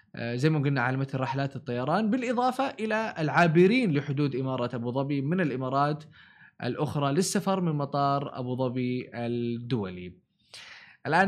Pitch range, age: 135-185 Hz, 20-39